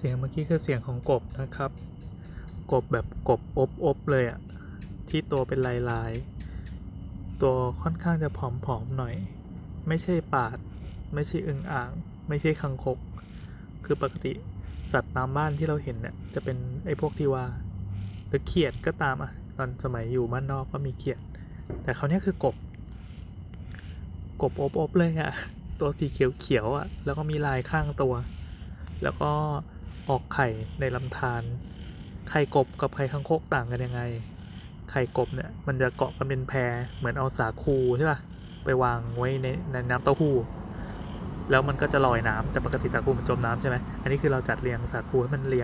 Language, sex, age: Thai, male, 20-39